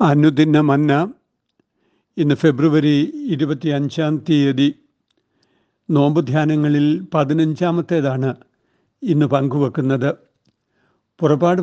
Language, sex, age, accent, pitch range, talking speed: Malayalam, male, 60-79, native, 140-165 Hz, 60 wpm